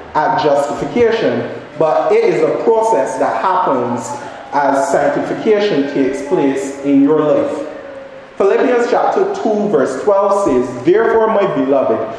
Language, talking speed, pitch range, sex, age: English, 125 wpm, 140-220 Hz, male, 30-49